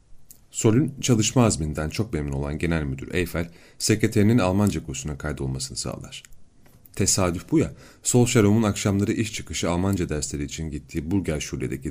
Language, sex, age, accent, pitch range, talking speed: Turkish, male, 40-59, native, 80-110 Hz, 135 wpm